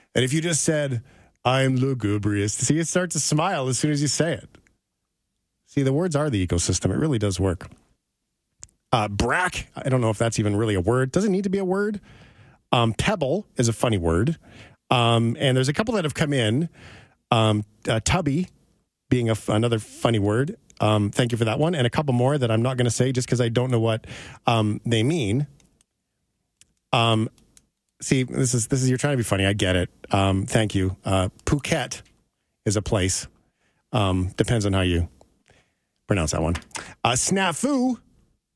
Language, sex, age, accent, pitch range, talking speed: English, male, 40-59, American, 110-150 Hz, 195 wpm